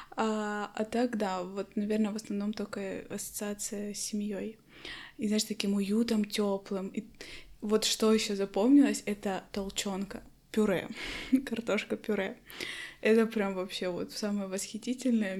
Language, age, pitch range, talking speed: Russian, 20-39, 200-230 Hz, 120 wpm